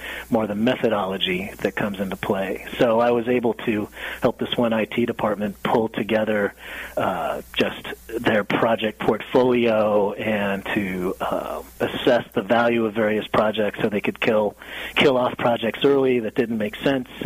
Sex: male